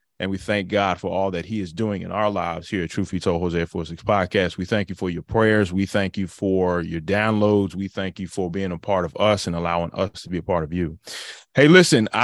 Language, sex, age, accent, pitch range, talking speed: English, male, 30-49, American, 100-125 Hz, 265 wpm